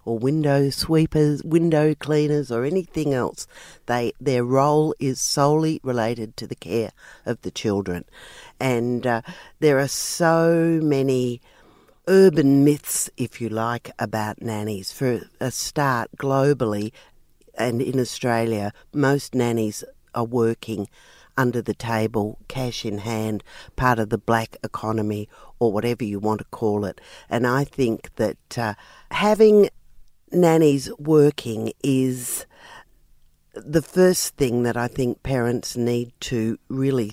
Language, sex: English, female